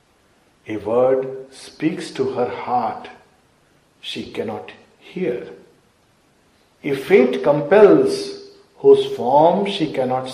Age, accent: 50-69, Indian